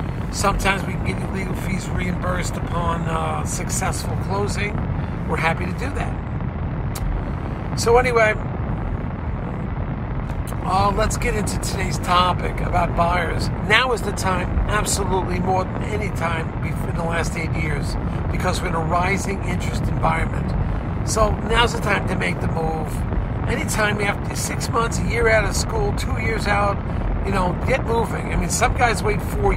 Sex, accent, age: male, American, 50-69